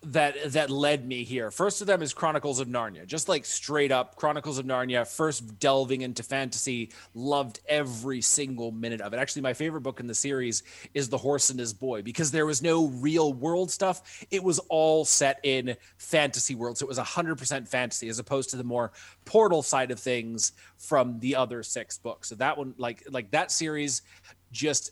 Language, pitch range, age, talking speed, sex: English, 120-150 Hz, 30-49, 205 wpm, male